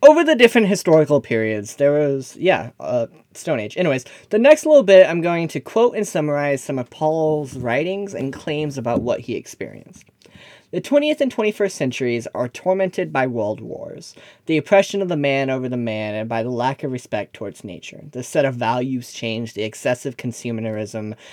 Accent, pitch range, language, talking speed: American, 120-160 Hz, English, 185 wpm